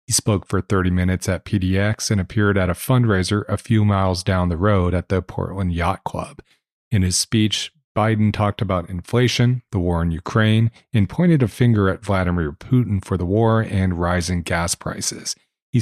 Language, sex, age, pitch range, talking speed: English, male, 40-59, 95-110 Hz, 185 wpm